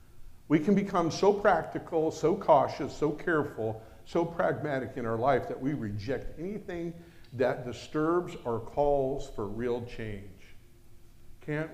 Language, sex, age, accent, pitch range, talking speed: English, male, 50-69, American, 135-200 Hz, 135 wpm